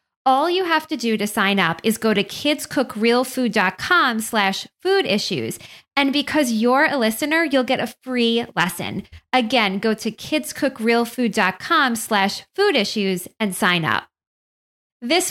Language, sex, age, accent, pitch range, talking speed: English, female, 20-39, American, 205-265 Hz, 135 wpm